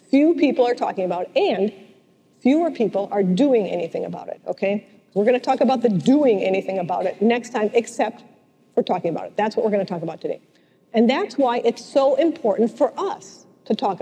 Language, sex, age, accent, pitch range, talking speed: English, female, 50-69, American, 205-275 Hz, 215 wpm